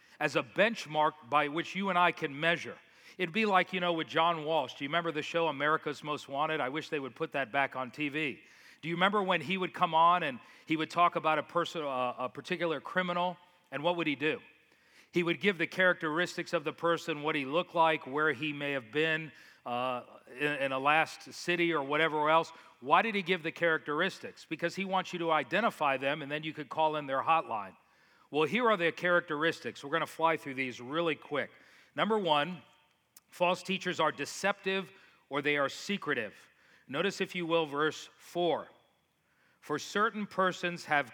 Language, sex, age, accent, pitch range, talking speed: English, male, 40-59, American, 150-185 Hz, 205 wpm